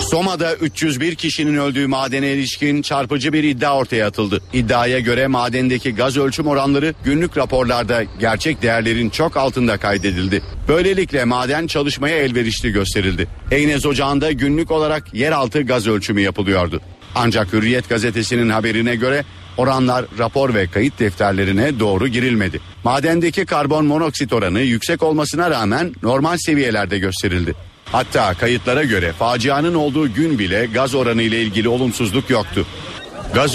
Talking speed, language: 130 wpm, Turkish